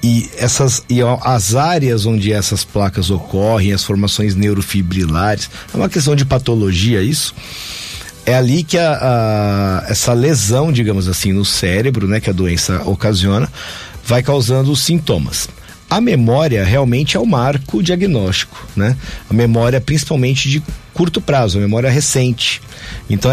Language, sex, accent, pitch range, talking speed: Portuguese, male, Brazilian, 100-135 Hz, 135 wpm